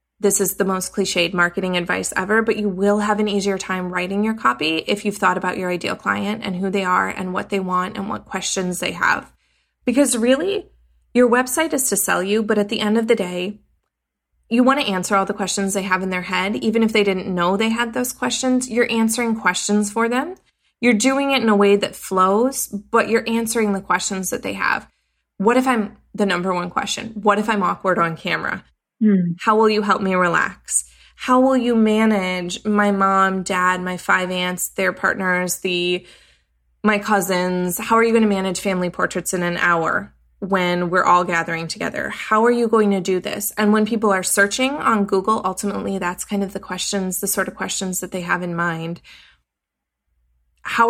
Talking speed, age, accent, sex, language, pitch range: 205 wpm, 20-39, American, female, English, 185-220 Hz